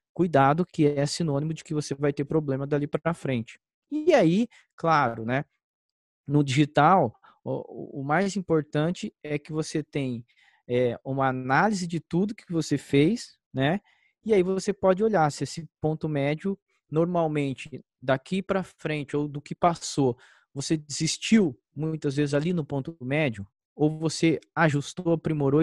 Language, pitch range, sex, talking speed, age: Portuguese, 140-180 Hz, male, 150 wpm, 20-39